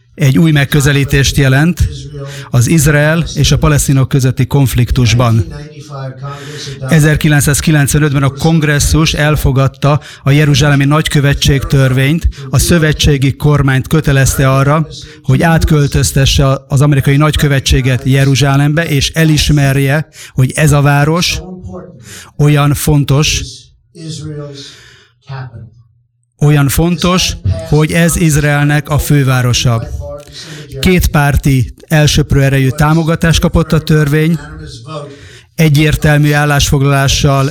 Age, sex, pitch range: 30-49, male, 135-150 Hz